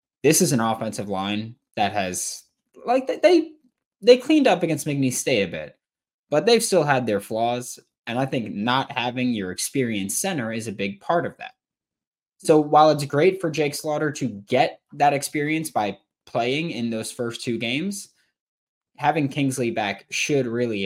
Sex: male